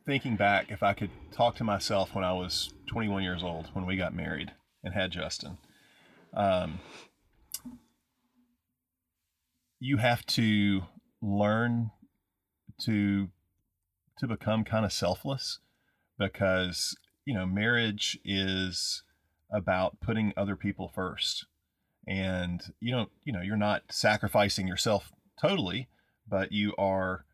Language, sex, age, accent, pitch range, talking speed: English, male, 30-49, American, 95-105 Hz, 120 wpm